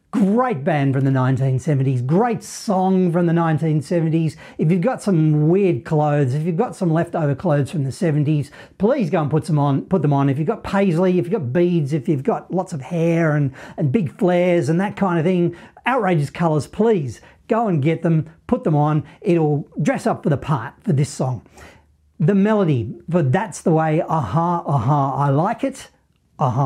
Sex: male